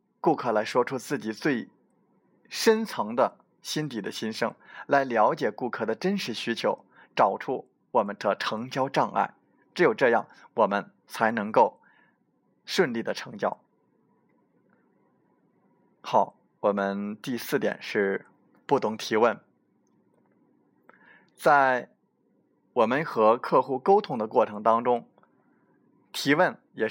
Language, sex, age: Chinese, male, 20-39